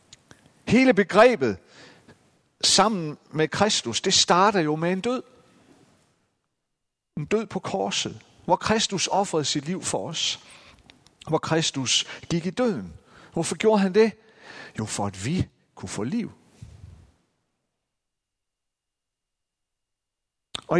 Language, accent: Danish, native